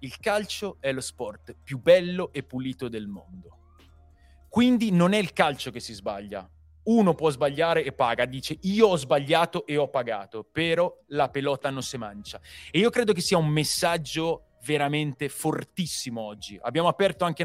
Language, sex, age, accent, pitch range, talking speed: Italian, male, 30-49, native, 120-165 Hz, 170 wpm